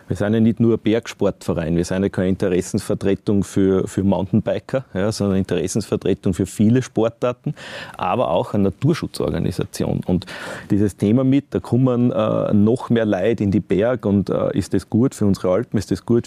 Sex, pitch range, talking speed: male, 95-115 Hz, 185 wpm